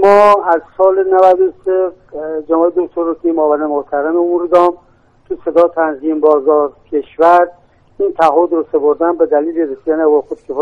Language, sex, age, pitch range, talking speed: Persian, male, 50-69, 155-185 Hz, 140 wpm